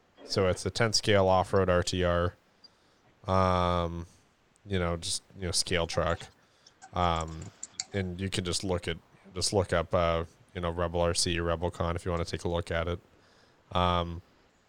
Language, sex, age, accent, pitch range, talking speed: English, male, 20-39, American, 85-100 Hz, 180 wpm